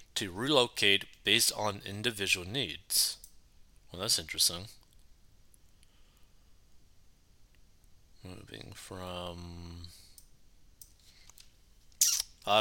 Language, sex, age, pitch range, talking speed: English, male, 20-39, 90-110 Hz, 55 wpm